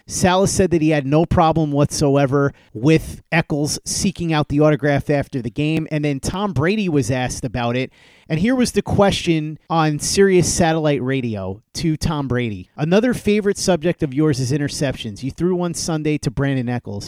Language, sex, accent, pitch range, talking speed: English, male, American, 135-170 Hz, 180 wpm